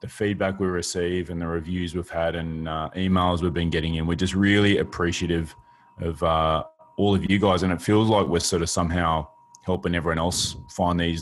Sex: male